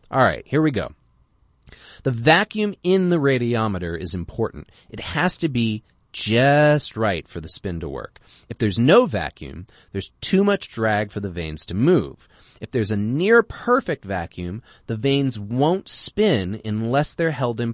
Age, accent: 30-49, American